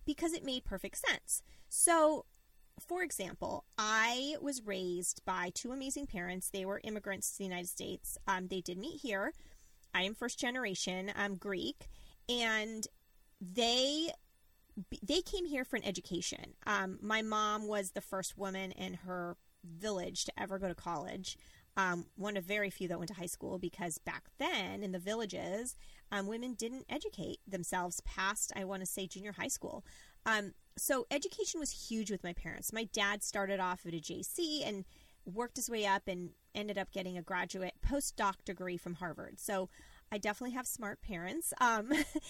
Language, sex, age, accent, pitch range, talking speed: English, female, 20-39, American, 185-235 Hz, 175 wpm